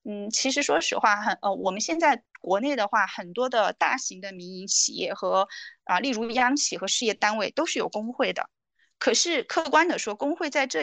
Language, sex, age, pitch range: Chinese, female, 20-39, 210-295 Hz